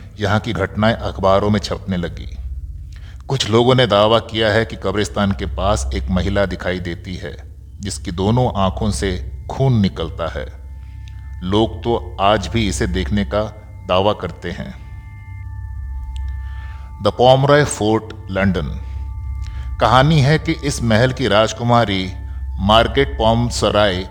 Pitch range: 85-110 Hz